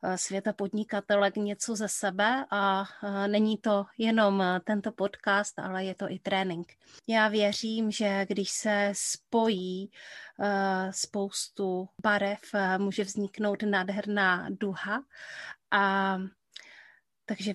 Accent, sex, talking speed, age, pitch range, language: native, female, 105 wpm, 30-49, 190-210 Hz, Czech